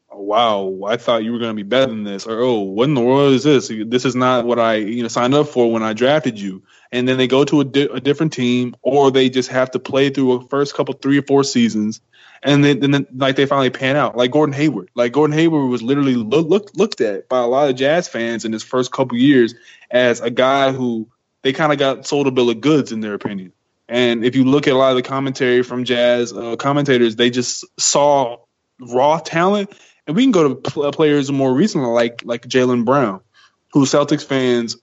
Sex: male